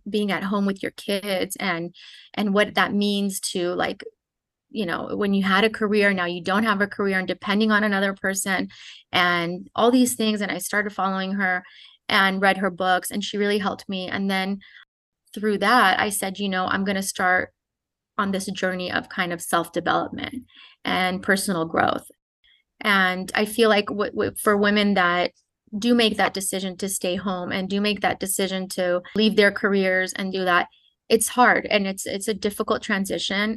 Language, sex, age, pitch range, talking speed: English, female, 30-49, 190-210 Hz, 190 wpm